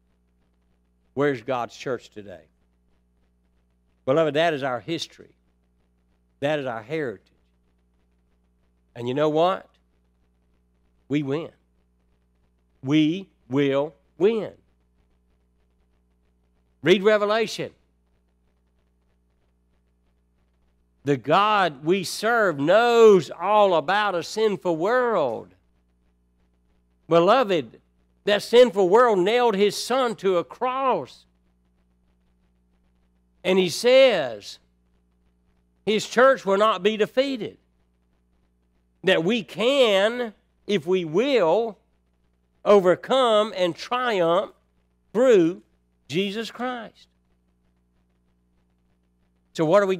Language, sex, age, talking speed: English, male, 60-79, 85 wpm